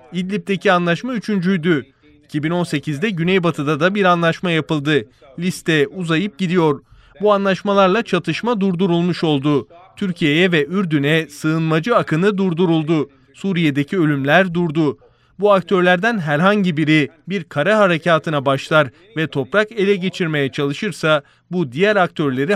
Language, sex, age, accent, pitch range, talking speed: Turkish, male, 30-49, native, 150-185 Hz, 110 wpm